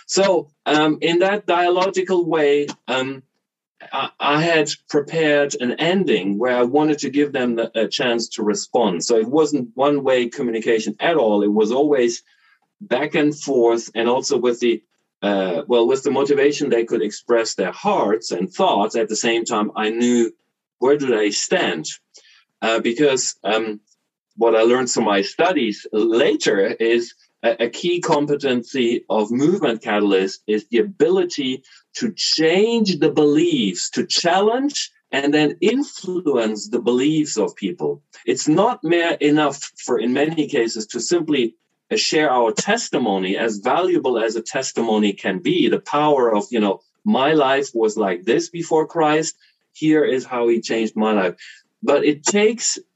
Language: English